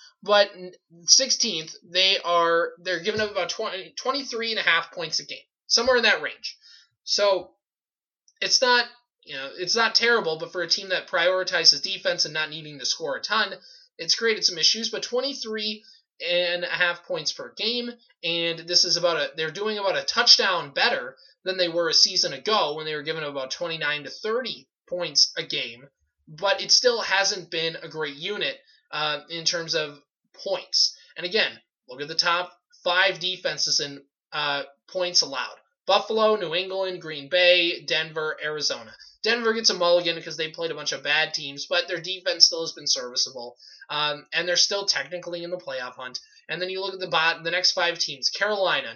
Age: 20-39